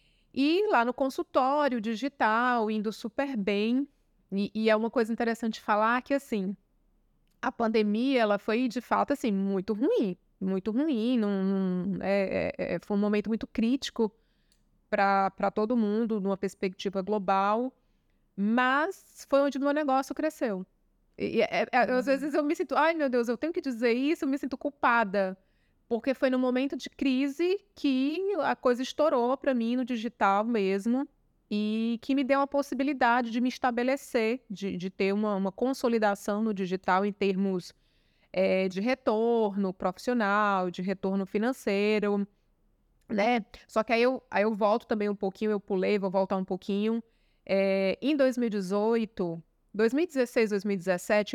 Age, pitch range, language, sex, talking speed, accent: 30-49, 200-260 Hz, Portuguese, female, 145 wpm, Brazilian